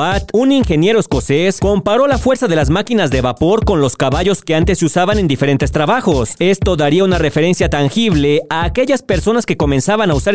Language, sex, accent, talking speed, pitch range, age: Spanish, male, Mexican, 195 wpm, 145-215 Hz, 40-59